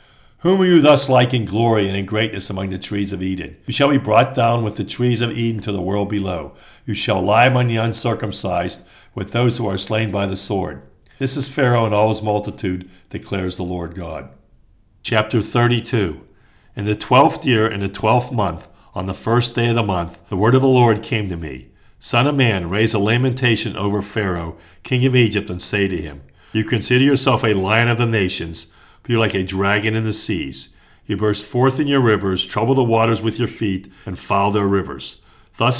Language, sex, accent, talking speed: English, male, American, 215 wpm